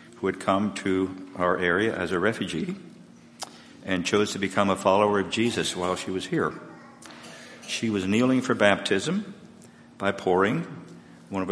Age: 50-69